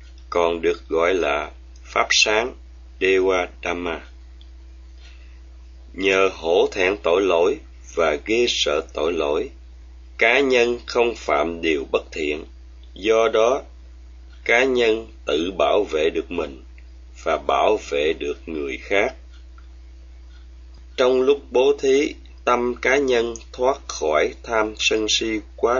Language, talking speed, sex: Vietnamese, 125 wpm, male